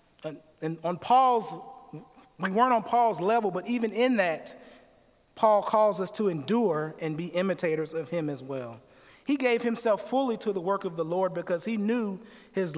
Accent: American